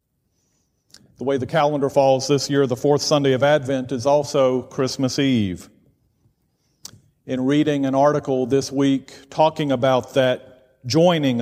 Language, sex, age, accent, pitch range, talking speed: English, male, 50-69, American, 125-145 Hz, 135 wpm